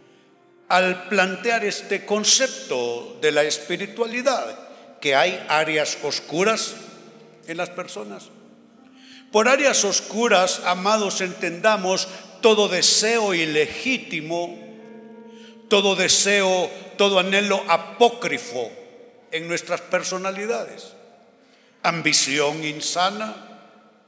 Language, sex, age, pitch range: Spanish, male, 60-79, 160-230 Hz